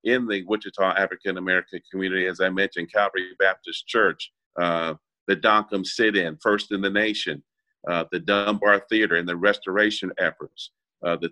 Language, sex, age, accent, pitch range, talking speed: English, male, 50-69, American, 95-110 Hz, 155 wpm